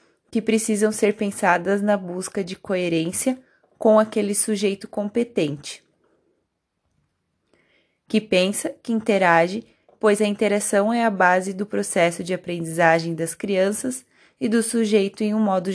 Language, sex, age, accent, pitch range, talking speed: Portuguese, female, 20-39, Brazilian, 185-215 Hz, 130 wpm